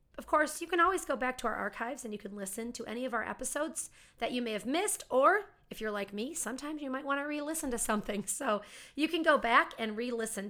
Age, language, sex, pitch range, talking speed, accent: 40-59, English, female, 210-260 Hz, 250 wpm, American